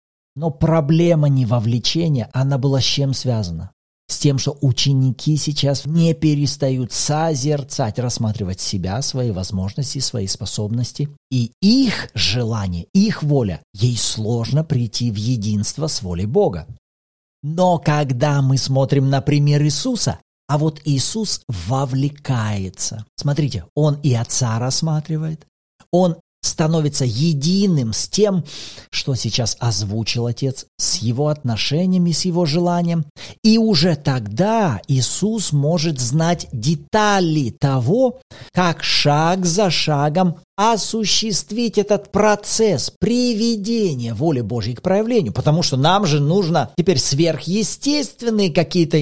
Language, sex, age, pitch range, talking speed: Russian, male, 40-59, 120-170 Hz, 115 wpm